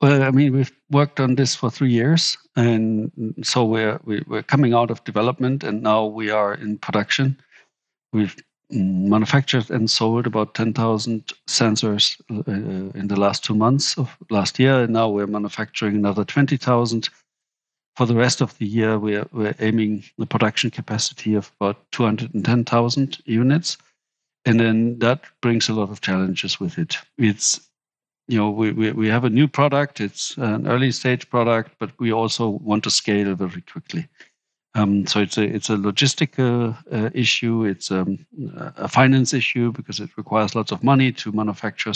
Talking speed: 175 wpm